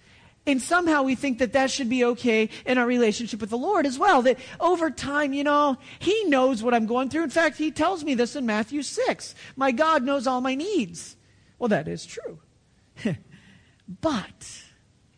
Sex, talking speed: male, 190 wpm